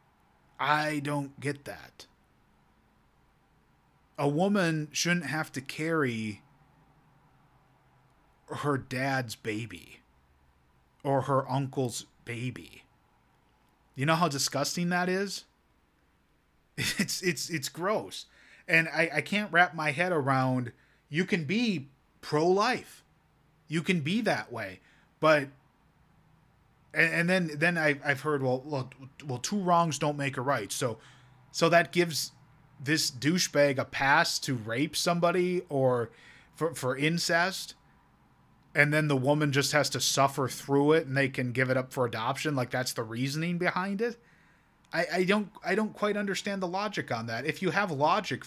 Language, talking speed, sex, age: English, 140 wpm, male, 30-49